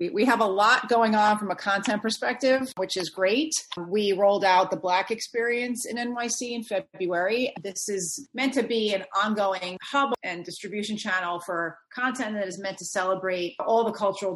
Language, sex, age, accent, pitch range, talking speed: English, female, 30-49, American, 175-205 Hz, 185 wpm